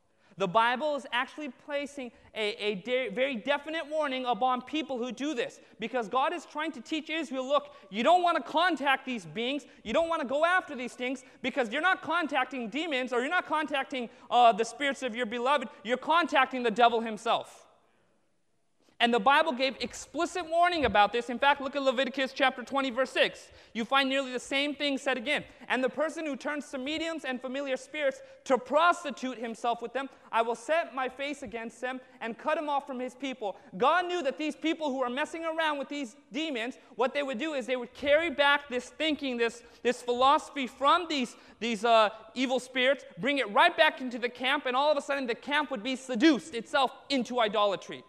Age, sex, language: 30-49, male, English